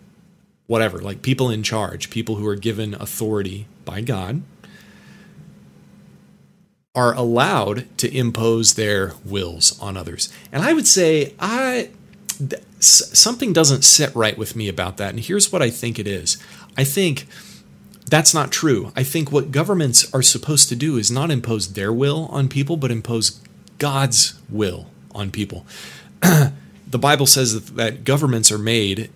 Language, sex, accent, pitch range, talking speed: English, male, American, 110-145 Hz, 150 wpm